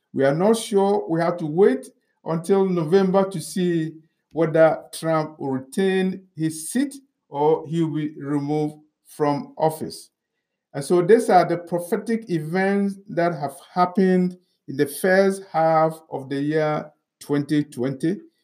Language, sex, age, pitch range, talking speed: English, male, 50-69, 155-200 Hz, 140 wpm